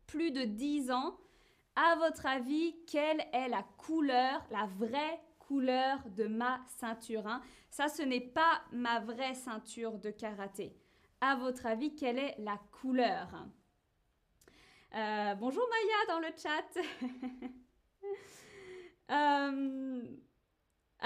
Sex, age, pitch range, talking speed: female, 20-39, 245-320 Hz, 115 wpm